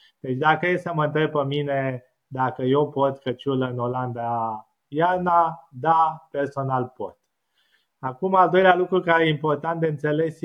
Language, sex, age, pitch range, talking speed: Romanian, male, 20-39, 130-160 Hz, 150 wpm